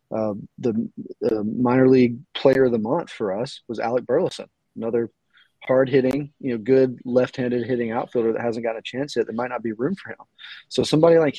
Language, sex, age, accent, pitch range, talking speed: English, male, 30-49, American, 115-140 Hz, 205 wpm